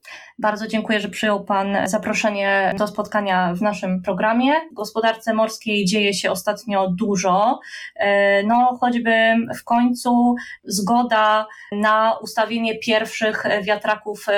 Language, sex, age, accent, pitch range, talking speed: Polish, female, 20-39, native, 205-235 Hz, 115 wpm